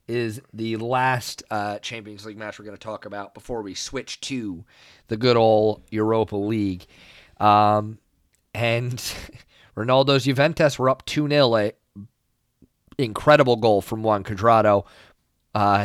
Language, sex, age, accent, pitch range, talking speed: English, male, 30-49, American, 105-130 Hz, 135 wpm